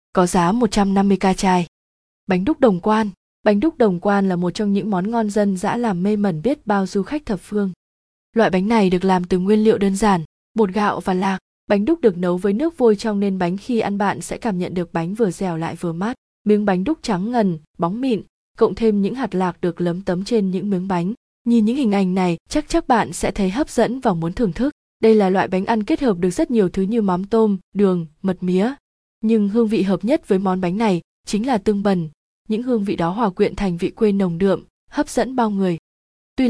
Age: 20-39